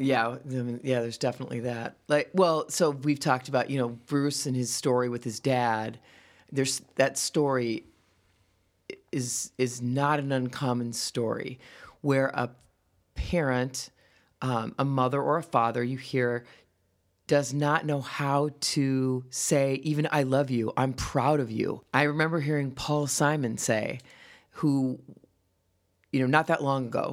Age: 40-59